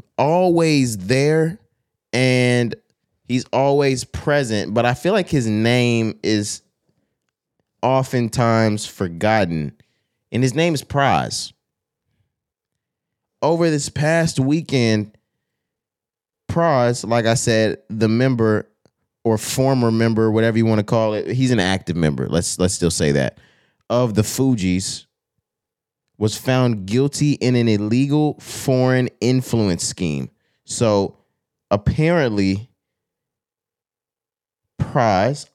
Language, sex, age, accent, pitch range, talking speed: English, male, 20-39, American, 105-135 Hz, 105 wpm